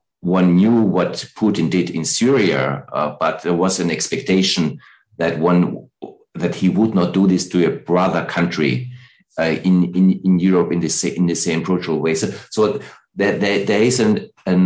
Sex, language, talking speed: male, English, 190 wpm